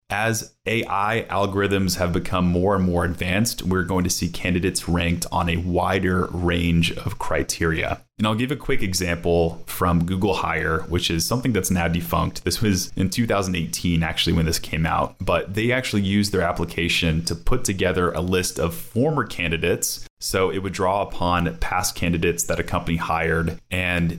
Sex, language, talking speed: male, English, 175 wpm